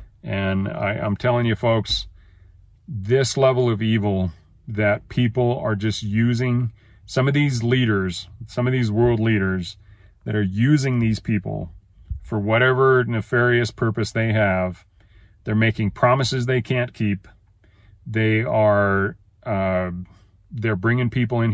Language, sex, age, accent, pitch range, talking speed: English, male, 40-59, American, 95-120 Hz, 130 wpm